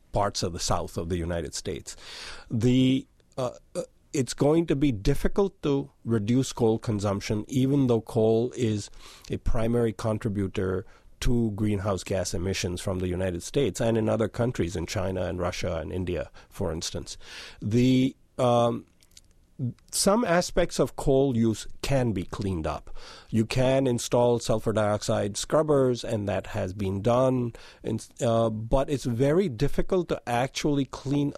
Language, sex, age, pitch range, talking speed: English, male, 50-69, 95-130 Hz, 145 wpm